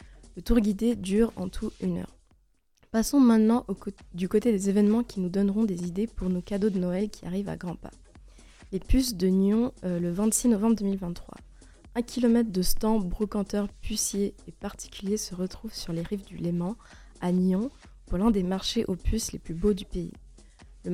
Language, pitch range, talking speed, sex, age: French, 185-220 Hz, 200 wpm, female, 20-39